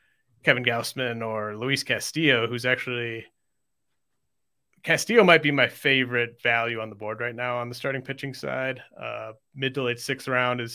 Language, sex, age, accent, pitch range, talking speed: English, male, 30-49, American, 120-135 Hz, 165 wpm